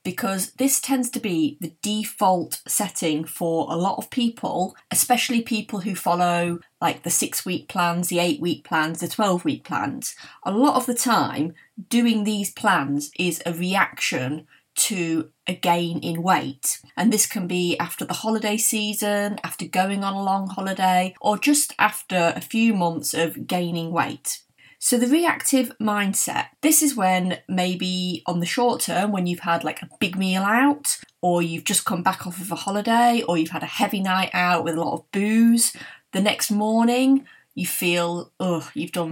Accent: British